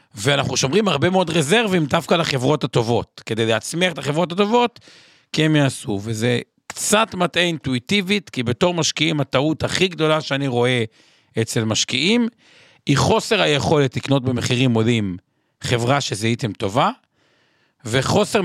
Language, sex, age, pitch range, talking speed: Hebrew, male, 50-69, 130-175 Hz, 135 wpm